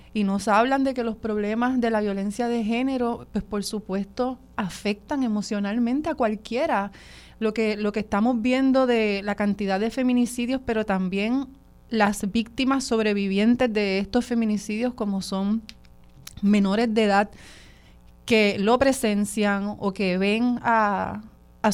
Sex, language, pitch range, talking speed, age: female, Spanish, 200-240 Hz, 140 wpm, 30-49